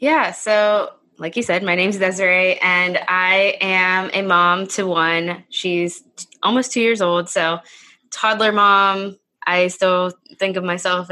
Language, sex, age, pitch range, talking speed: English, female, 20-39, 175-210 Hz, 155 wpm